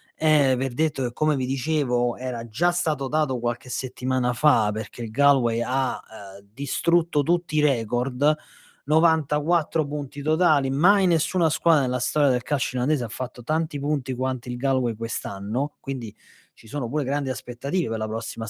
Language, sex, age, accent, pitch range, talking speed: Italian, male, 30-49, native, 120-155 Hz, 165 wpm